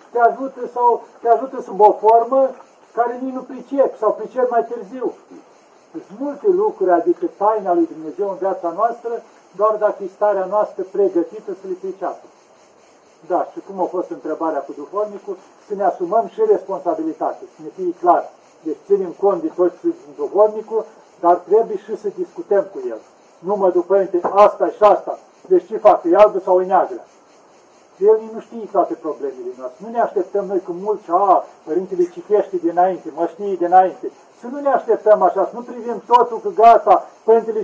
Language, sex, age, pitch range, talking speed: Romanian, male, 50-69, 205-290 Hz, 170 wpm